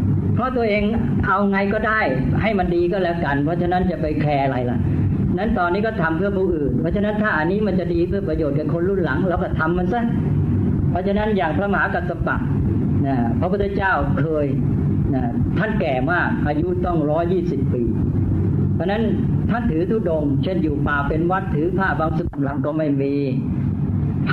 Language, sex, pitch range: Thai, female, 145-185 Hz